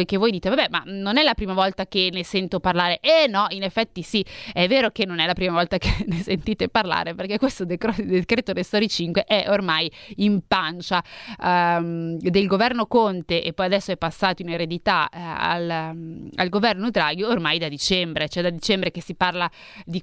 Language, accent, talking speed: Italian, native, 195 wpm